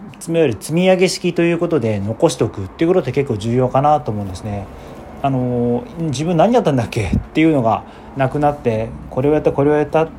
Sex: male